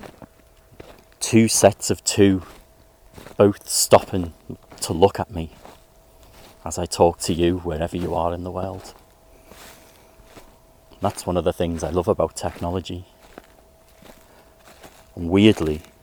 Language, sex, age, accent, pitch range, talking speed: English, male, 30-49, British, 80-95 Hz, 125 wpm